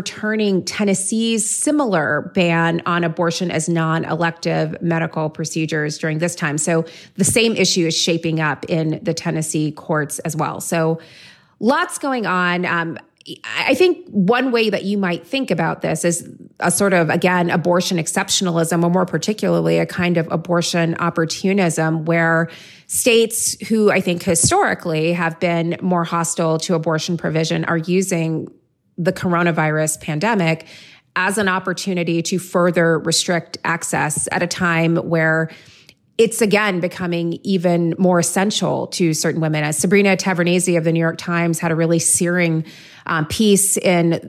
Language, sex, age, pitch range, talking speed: English, female, 30-49, 165-185 Hz, 150 wpm